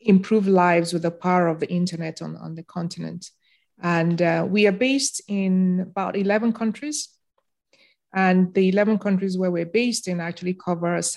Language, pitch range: English, 170-200 Hz